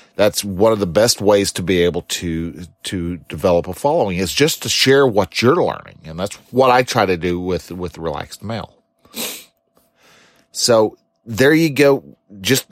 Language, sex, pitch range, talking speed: English, male, 95-120 Hz, 175 wpm